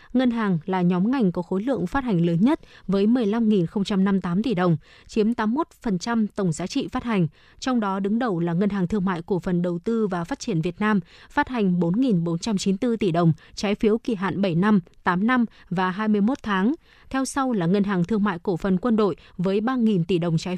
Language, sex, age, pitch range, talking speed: Vietnamese, female, 20-39, 185-225 Hz, 215 wpm